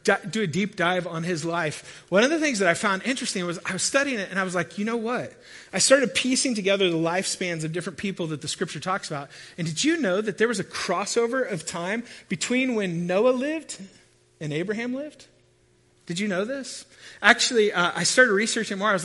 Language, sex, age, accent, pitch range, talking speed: English, male, 30-49, American, 160-215 Hz, 225 wpm